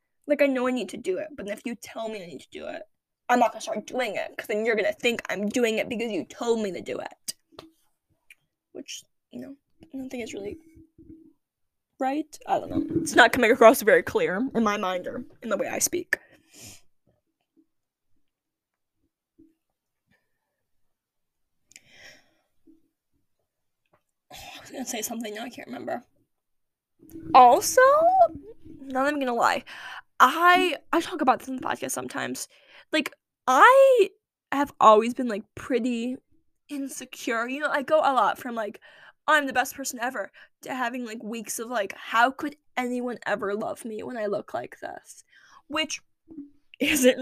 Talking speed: 165 wpm